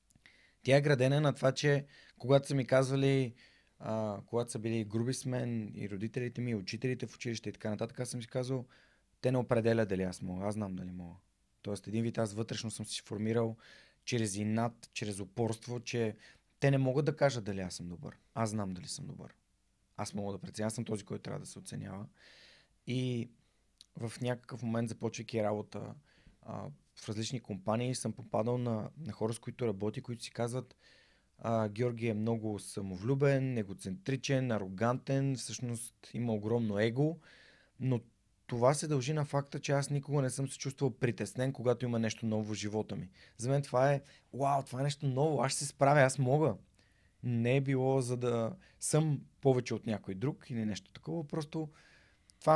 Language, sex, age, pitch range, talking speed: Bulgarian, male, 20-39, 110-135 Hz, 185 wpm